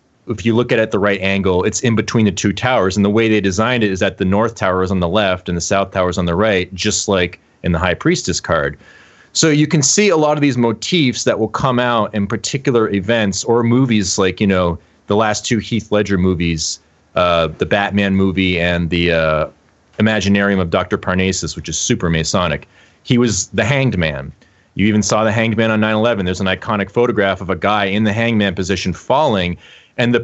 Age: 30-49